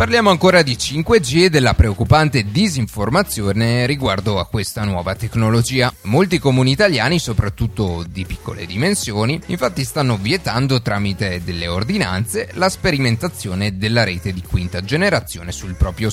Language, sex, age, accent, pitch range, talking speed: Italian, male, 30-49, native, 100-145 Hz, 130 wpm